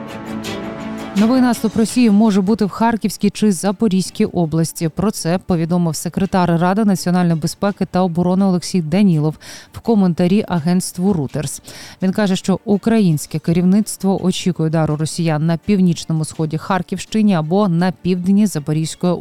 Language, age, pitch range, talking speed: Ukrainian, 20-39, 160-200 Hz, 130 wpm